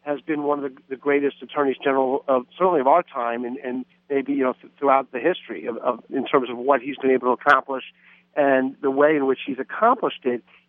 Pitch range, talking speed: 135-175 Hz, 230 wpm